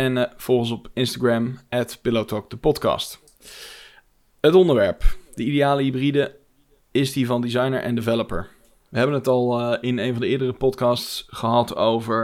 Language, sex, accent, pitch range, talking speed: Dutch, male, Dutch, 115-125 Hz, 155 wpm